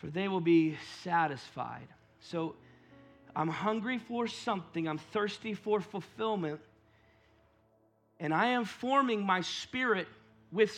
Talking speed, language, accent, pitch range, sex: 115 wpm, English, American, 130-165 Hz, male